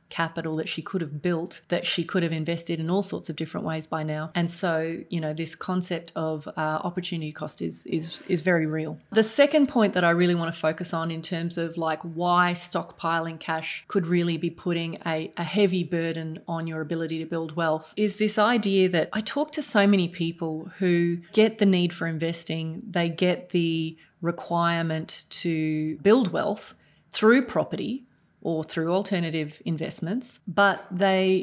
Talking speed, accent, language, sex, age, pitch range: 180 wpm, Australian, English, female, 30-49, 165-190 Hz